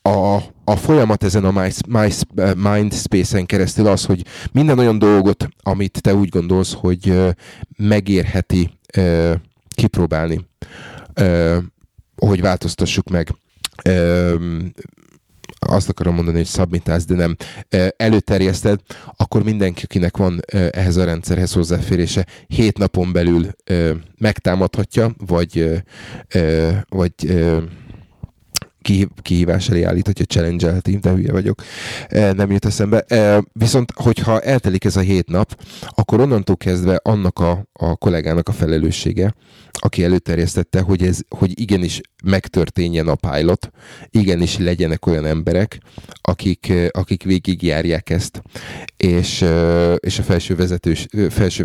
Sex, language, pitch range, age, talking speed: male, Hungarian, 85-100 Hz, 30-49, 125 wpm